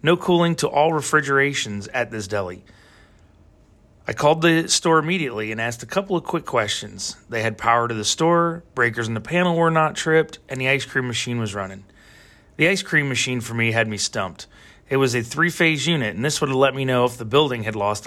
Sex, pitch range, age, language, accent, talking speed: male, 115-160 Hz, 30-49, English, American, 220 wpm